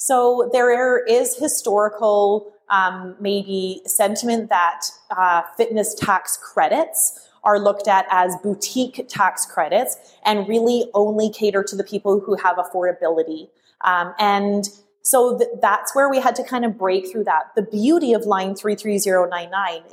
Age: 30-49